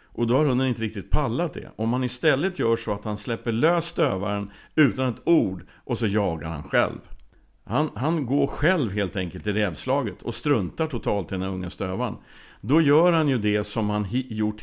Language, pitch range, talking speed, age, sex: Swedish, 95-125 Hz, 205 wpm, 50-69, male